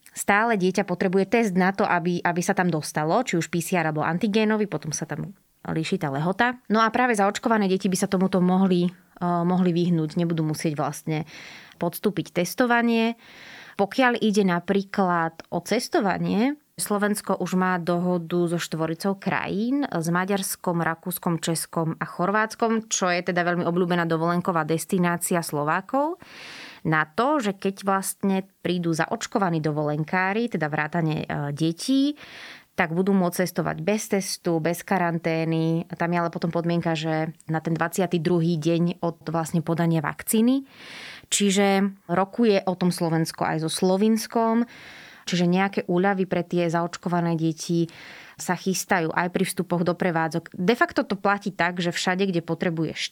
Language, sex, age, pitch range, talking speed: Slovak, female, 20-39, 170-200 Hz, 145 wpm